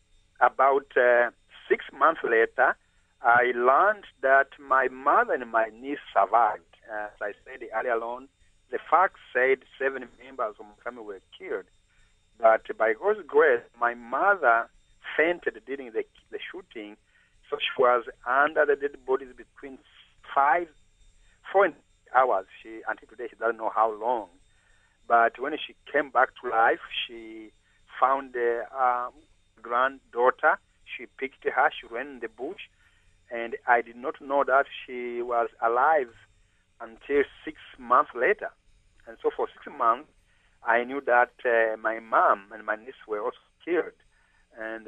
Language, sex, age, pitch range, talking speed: English, male, 50-69, 110-150 Hz, 150 wpm